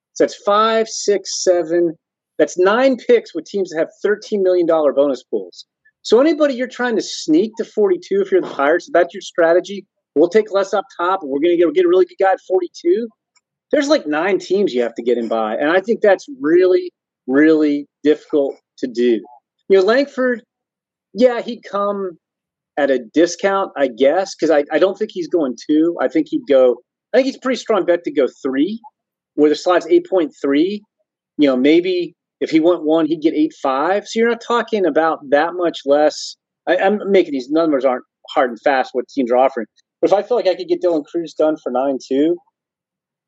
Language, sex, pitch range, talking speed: English, male, 150-255 Hz, 200 wpm